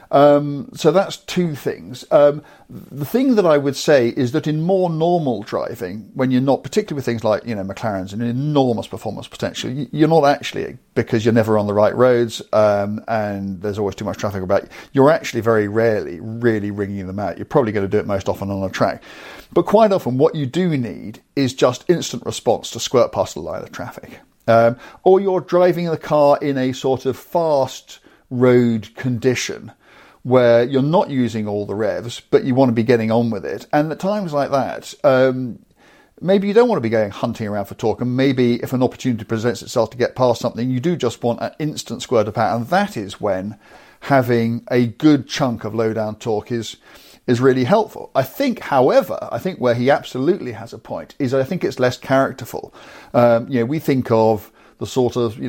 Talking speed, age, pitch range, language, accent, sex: 215 wpm, 50-69, 110-140 Hz, English, British, male